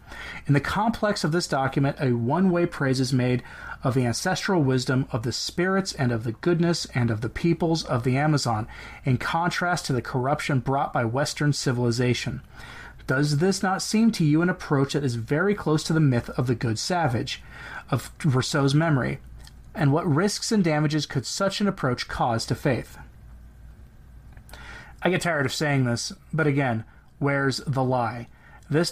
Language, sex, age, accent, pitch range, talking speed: English, male, 30-49, American, 125-165 Hz, 175 wpm